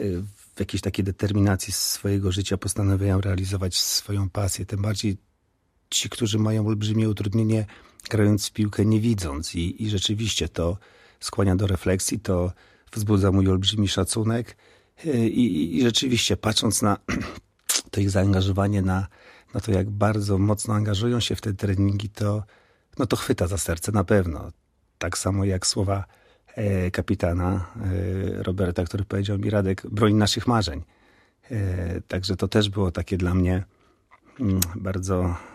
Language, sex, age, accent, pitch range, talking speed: Polish, male, 40-59, native, 95-110 Hz, 140 wpm